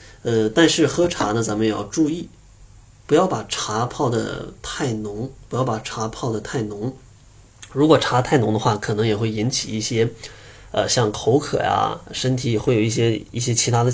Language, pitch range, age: Chinese, 105-130 Hz, 20-39